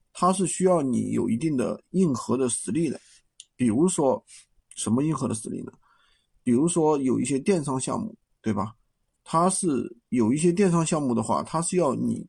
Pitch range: 130-195 Hz